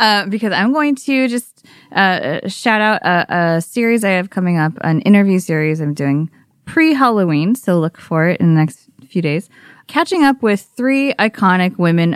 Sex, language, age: female, English, 20-39